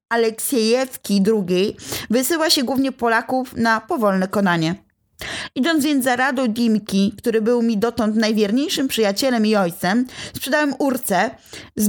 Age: 20-39